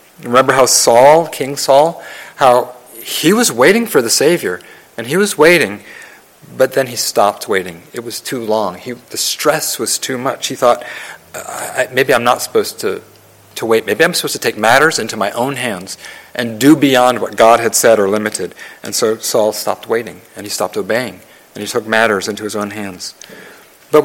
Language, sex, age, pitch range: English, male, 40-59, 110-155 Hz